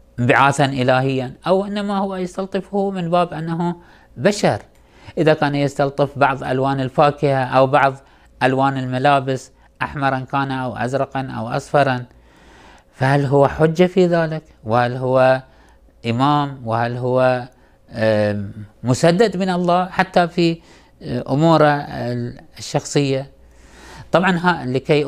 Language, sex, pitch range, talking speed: Arabic, male, 120-160 Hz, 110 wpm